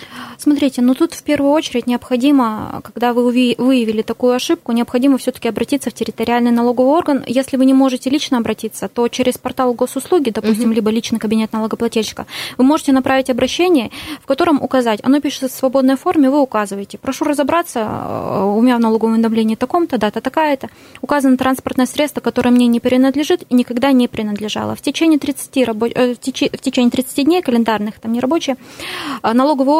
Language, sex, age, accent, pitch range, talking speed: Russian, female, 20-39, native, 225-270 Hz, 165 wpm